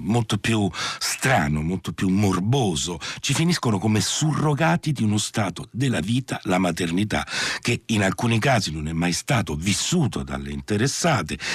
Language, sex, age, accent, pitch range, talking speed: Italian, male, 60-79, native, 80-120 Hz, 145 wpm